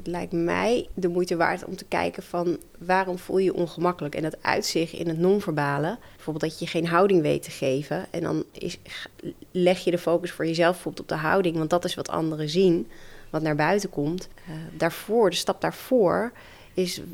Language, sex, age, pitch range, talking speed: Dutch, female, 30-49, 165-185 Hz, 200 wpm